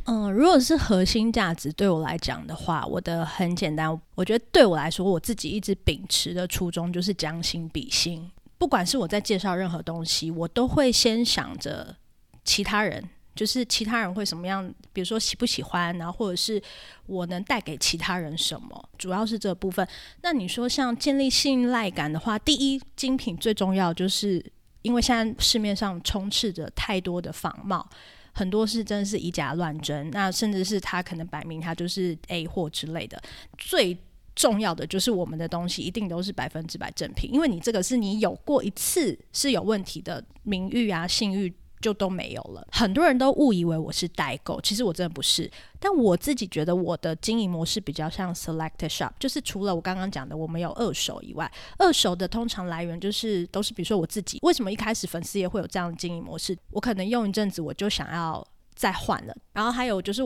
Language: Chinese